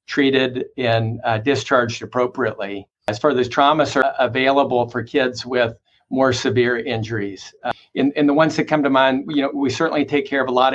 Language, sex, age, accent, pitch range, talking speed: English, male, 50-69, American, 120-135 Hz, 195 wpm